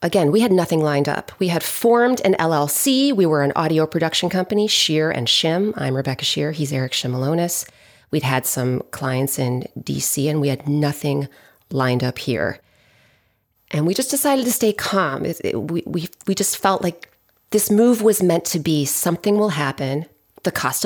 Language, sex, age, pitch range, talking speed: English, female, 30-49, 135-190 Hz, 185 wpm